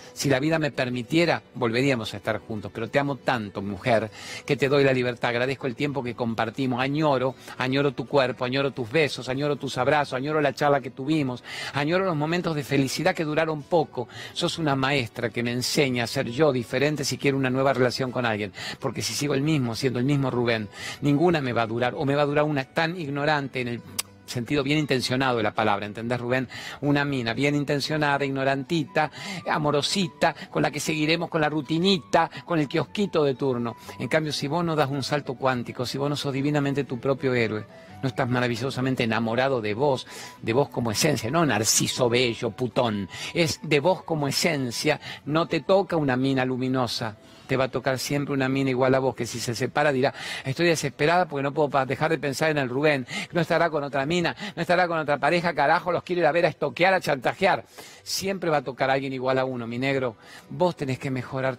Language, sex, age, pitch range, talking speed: Spanish, male, 50-69, 125-150 Hz, 210 wpm